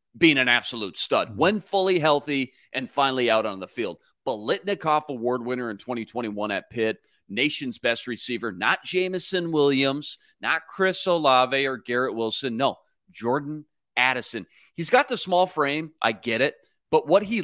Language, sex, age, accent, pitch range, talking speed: English, male, 30-49, American, 120-170 Hz, 160 wpm